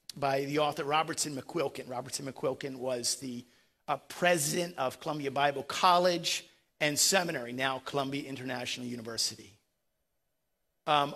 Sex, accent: male, American